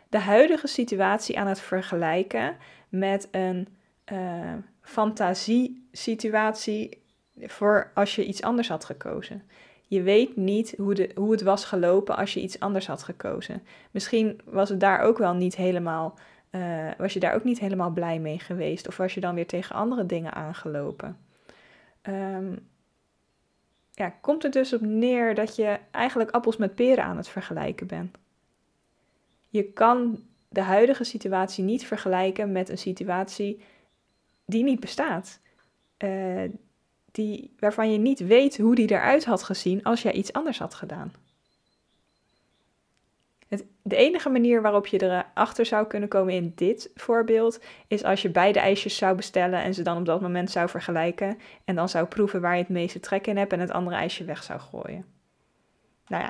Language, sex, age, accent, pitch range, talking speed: Dutch, female, 20-39, Dutch, 185-220 Hz, 160 wpm